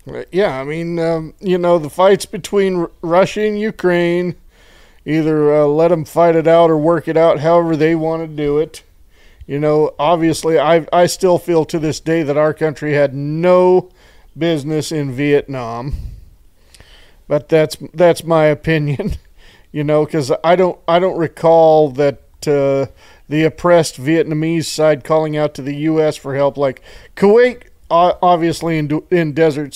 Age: 40-59